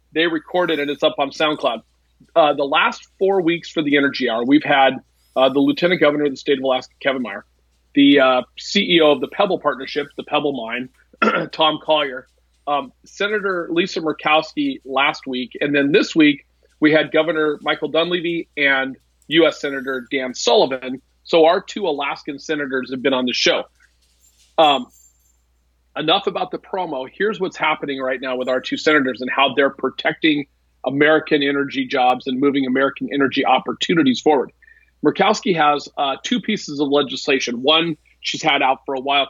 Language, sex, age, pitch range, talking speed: English, male, 40-59, 130-155 Hz, 170 wpm